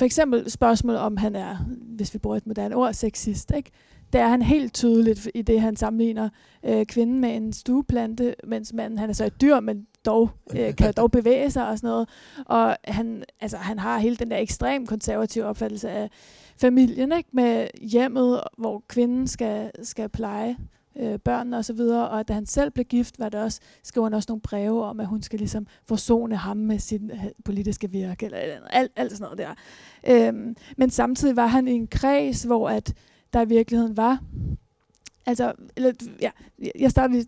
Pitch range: 220-250 Hz